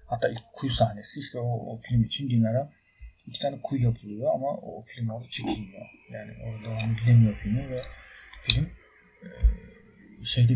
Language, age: Turkish, 40-59